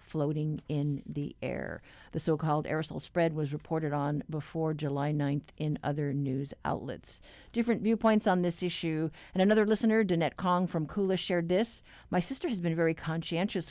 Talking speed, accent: 165 wpm, American